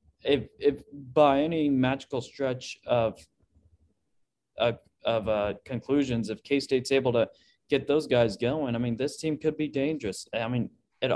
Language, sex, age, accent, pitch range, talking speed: English, male, 20-39, American, 115-140 Hz, 155 wpm